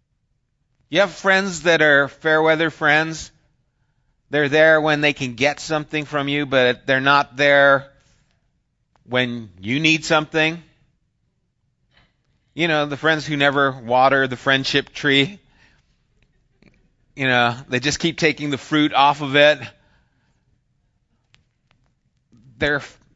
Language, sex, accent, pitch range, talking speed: English, male, American, 120-155 Hz, 120 wpm